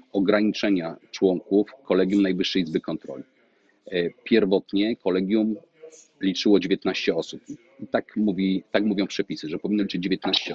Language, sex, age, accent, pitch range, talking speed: Polish, male, 40-59, native, 90-105 Hz, 120 wpm